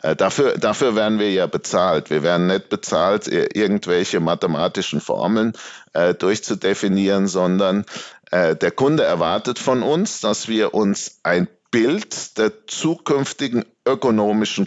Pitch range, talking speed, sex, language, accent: 95-120 Hz, 125 wpm, male, German, German